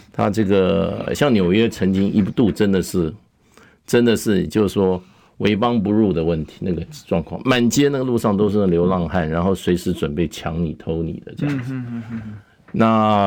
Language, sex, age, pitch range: Chinese, male, 50-69, 85-115 Hz